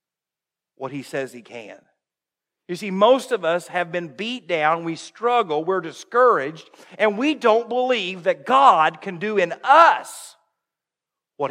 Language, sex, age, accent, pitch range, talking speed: English, male, 50-69, American, 180-240 Hz, 150 wpm